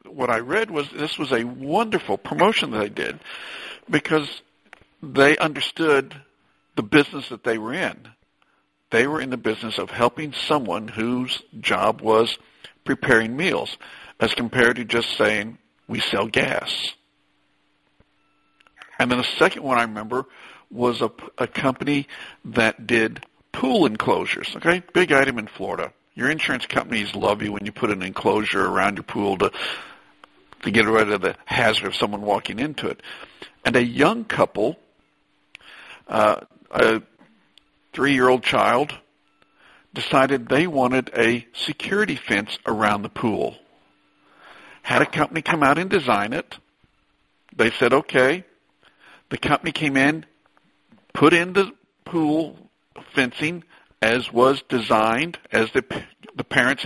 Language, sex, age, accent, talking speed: English, male, 60-79, American, 140 wpm